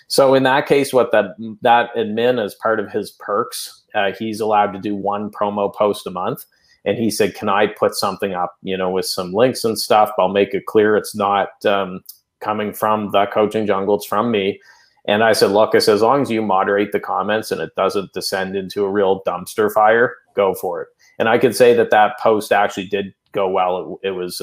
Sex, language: male, English